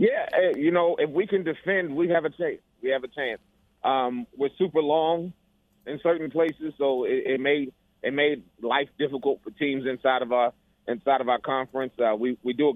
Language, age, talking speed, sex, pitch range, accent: English, 30-49, 205 wpm, male, 125-150 Hz, American